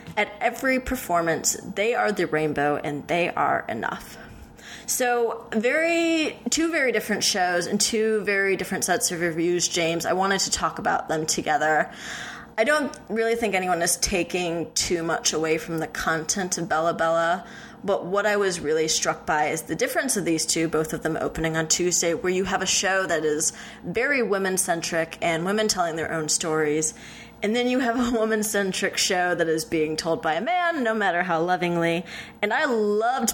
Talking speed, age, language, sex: 185 wpm, 20-39, English, female